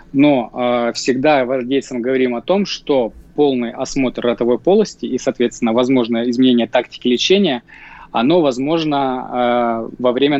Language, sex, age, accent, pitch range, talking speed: Russian, male, 20-39, native, 125-150 Hz, 125 wpm